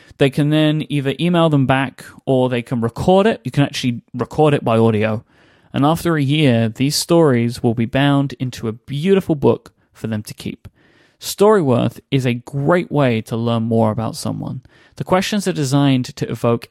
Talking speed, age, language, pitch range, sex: 185 wpm, 30-49, English, 120-150 Hz, male